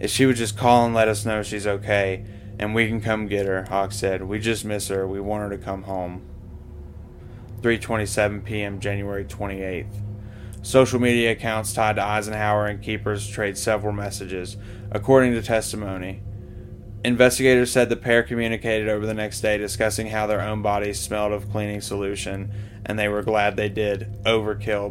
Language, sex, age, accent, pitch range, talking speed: English, male, 20-39, American, 100-115 Hz, 175 wpm